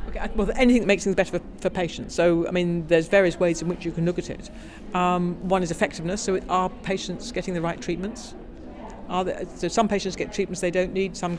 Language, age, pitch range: English, 50-69, 175-205 Hz